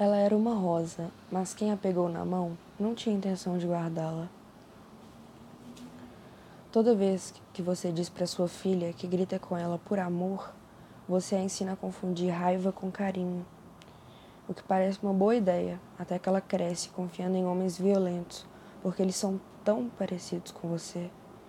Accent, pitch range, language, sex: Brazilian, 180-205 Hz, Portuguese, female